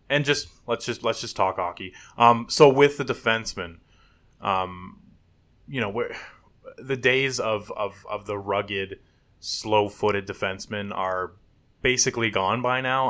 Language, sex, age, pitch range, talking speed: English, male, 20-39, 95-115 Hz, 145 wpm